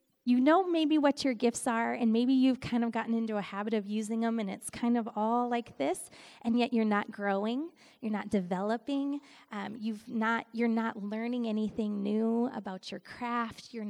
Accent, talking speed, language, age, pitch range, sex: American, 210 wpm, English, 20-39, 210-250 Hz, female